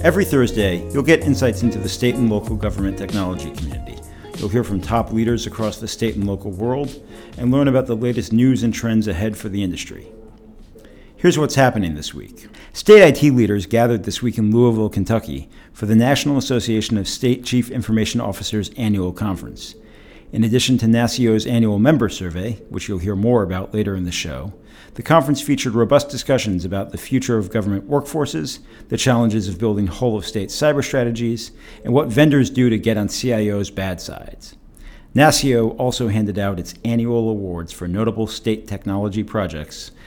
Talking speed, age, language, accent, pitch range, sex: 175 wpm, 50-69, English, American, 100-125 Hz, male